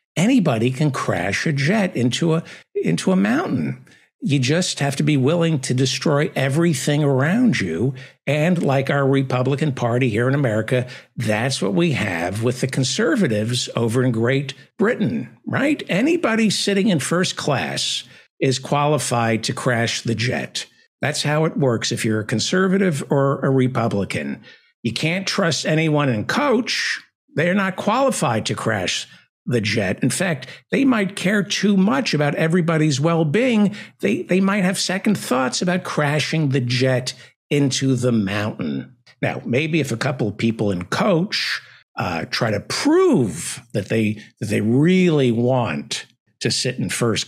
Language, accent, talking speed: English, American, 155 wpm